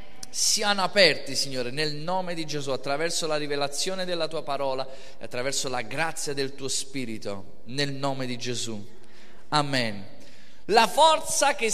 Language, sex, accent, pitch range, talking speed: Italian, male, native, 190-270 Hz, 145 wpm